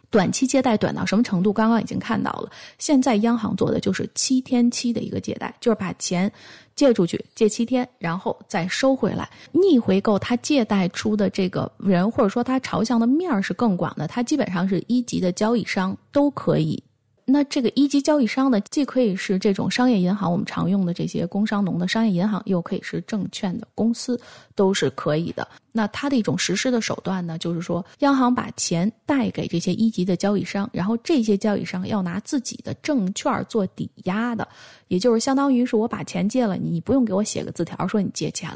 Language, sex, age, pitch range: Chinese, female, 20-39, 190-245 Hz